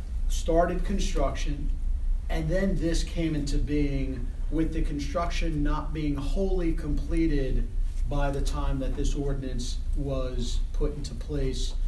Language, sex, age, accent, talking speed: English, male, 40-59, American, 125 wpm